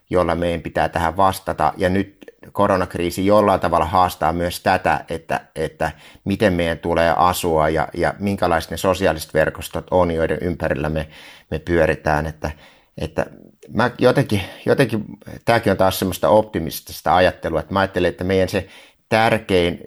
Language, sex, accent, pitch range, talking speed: Finnish, male, native, 80-95 Hz, 145 wpm